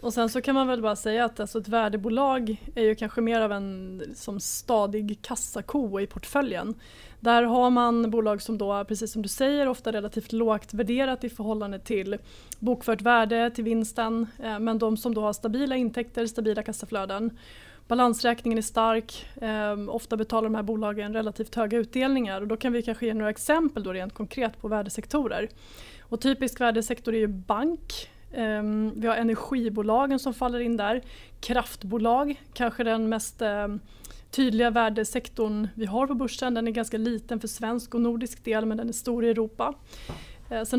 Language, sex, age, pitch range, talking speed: Swedish, female, 20-39, 215-240 Hz, 175 wpm